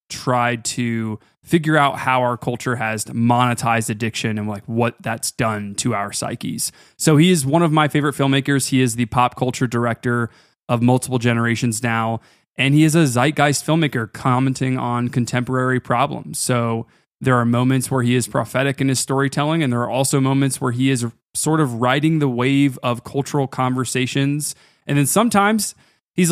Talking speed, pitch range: 175 wpm, 120-135 Hz